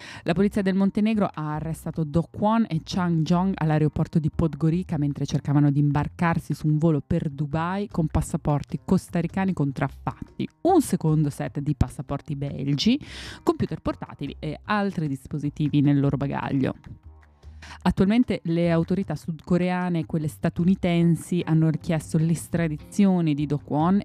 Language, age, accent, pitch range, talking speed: Italian, 20-39, native, 150-185 Hz, 135 wpm